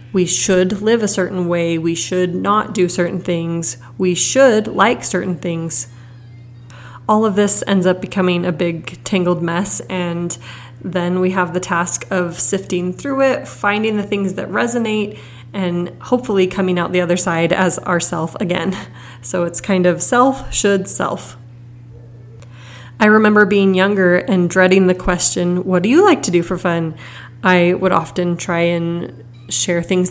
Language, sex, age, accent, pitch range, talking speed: English, female, 20-39, American, 165-190 Hz, 165 wpm